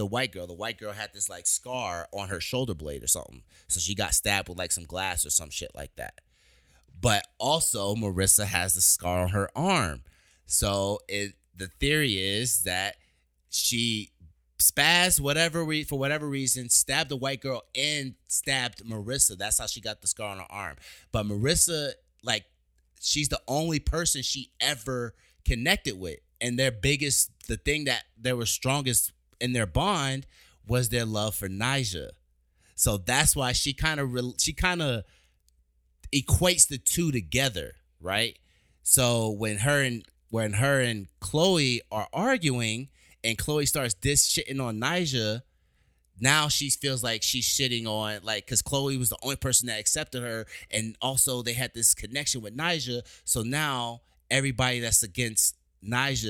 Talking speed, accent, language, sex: 165 wpm, American, English, male